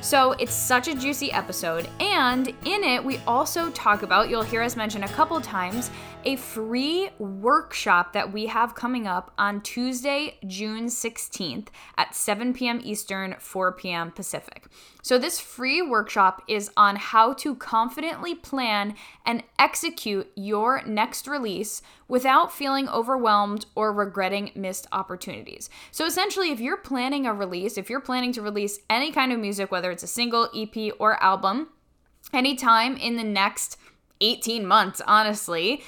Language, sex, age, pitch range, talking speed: English, female, 10-29, 205-265 Hz, 150 wpm